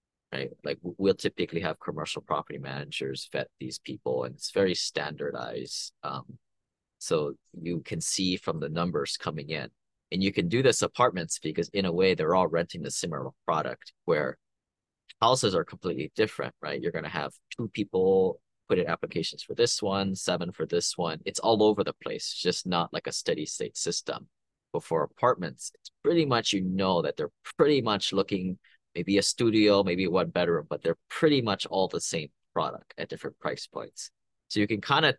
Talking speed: 190 wpm